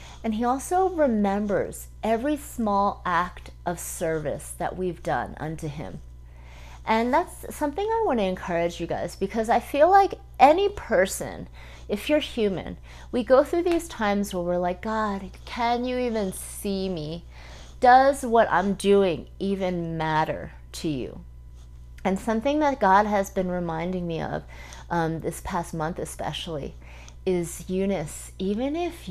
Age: 30-49